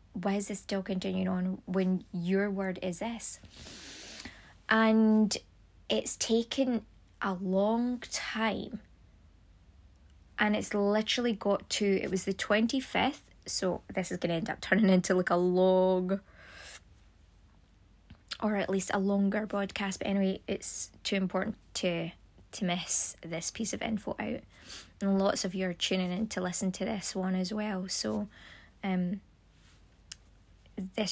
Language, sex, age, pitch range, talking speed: English, female, 20-39, 180-210 Hz, 140 wpm